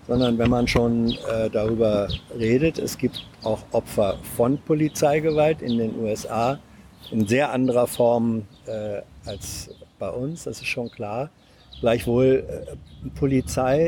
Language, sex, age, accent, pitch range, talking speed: German, male, 50-69, German, 120-145 Hz, 135 wpm